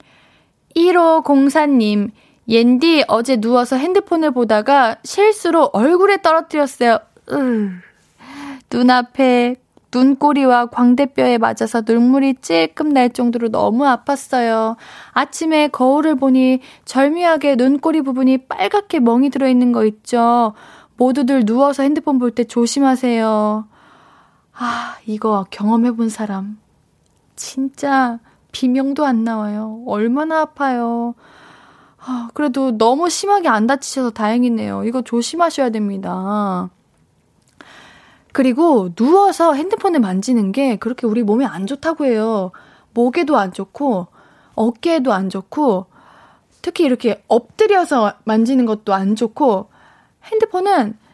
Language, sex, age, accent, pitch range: Korean, female, 20-39, native, 225-290 Hz